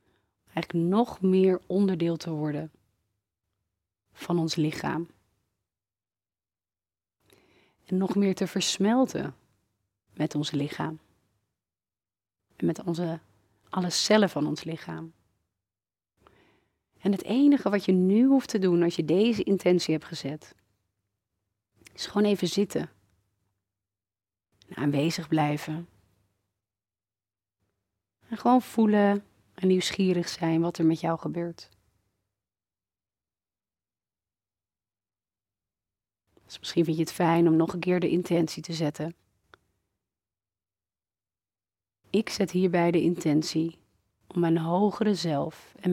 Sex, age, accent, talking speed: female, 30-49, Dutch, 105 wpm